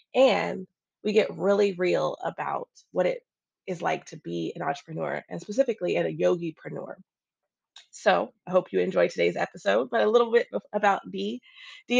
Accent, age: American, 20-39